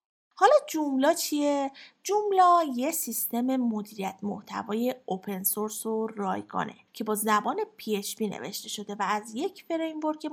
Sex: female